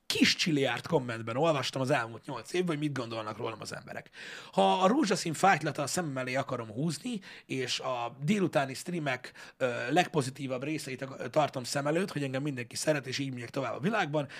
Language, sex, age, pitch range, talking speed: Hungarian, male, 30-49, 125-160 Hz, 175 wpm